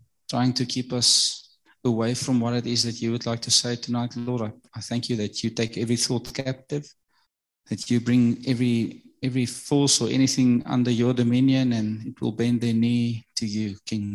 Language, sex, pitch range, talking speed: English, male, 115-145 Hz, 200 wpm